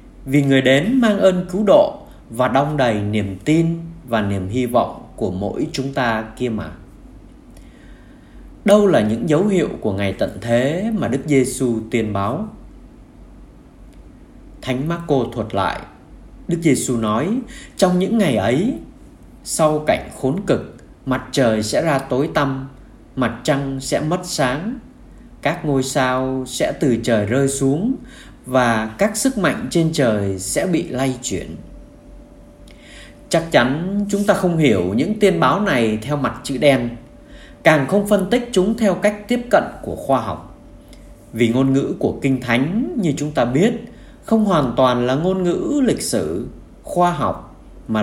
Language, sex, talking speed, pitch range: Vietnamese, male, 160 wpm, 120-180 Hz